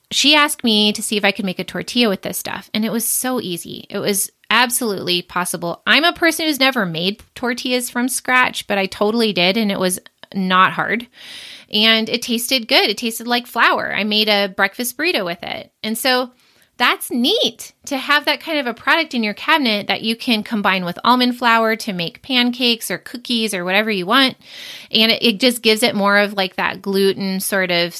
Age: 30-49